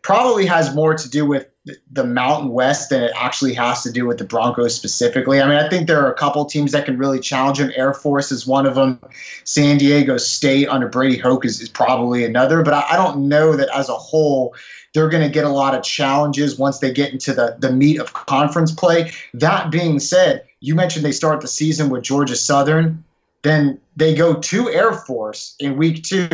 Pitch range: 135-160 Hz